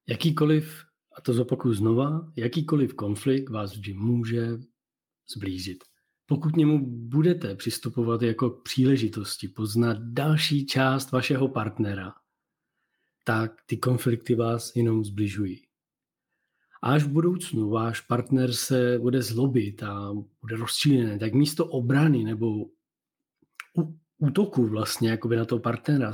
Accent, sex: native, male